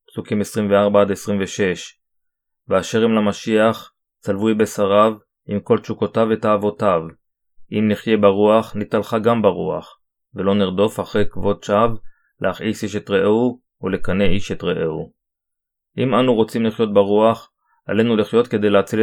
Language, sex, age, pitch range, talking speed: Hebrew, male, 20-39, 100-115 Hz, 135 wpm